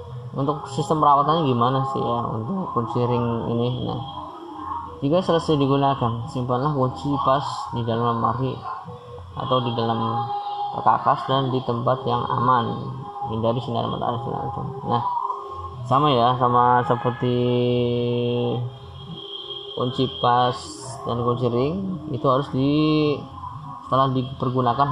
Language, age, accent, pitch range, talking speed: Indonesian, 20-39, native, 120-135 Hz, 120 wpm